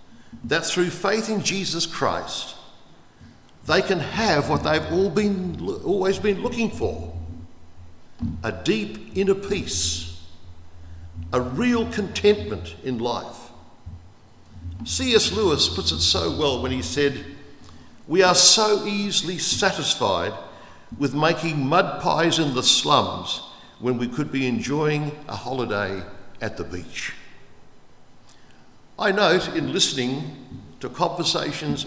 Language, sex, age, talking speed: English, male, 60-79, 120 wpm